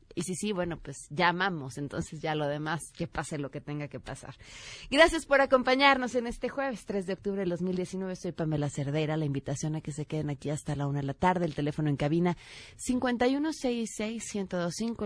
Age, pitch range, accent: 30-49, 155-205 Hz, Mexican